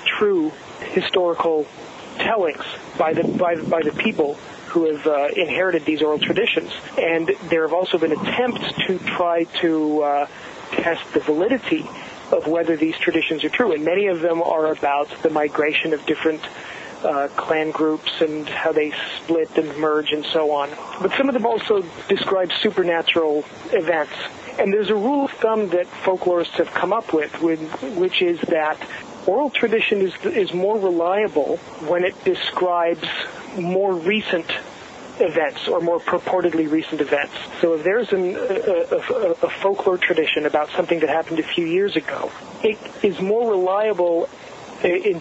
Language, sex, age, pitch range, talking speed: English, male, 40-59, 155-200 Hz, 155 wpm